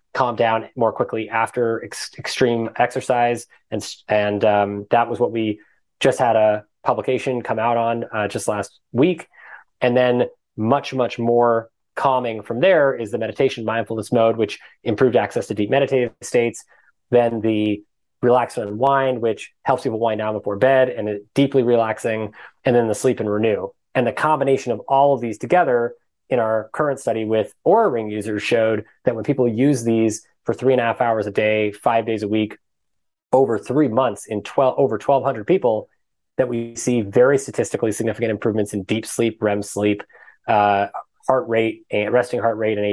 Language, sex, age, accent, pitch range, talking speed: English, male, 20-39, American, 105-125 Hz, 185 wpm